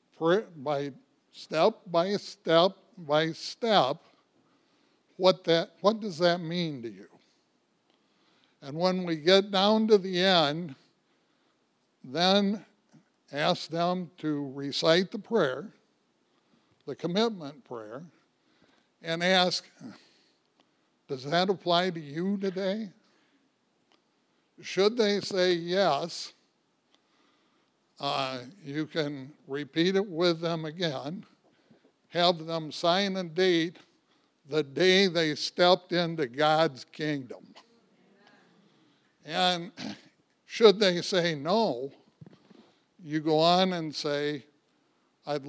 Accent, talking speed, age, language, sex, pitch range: American, 100 wpm, 60-79, English, male, 150-190 Hz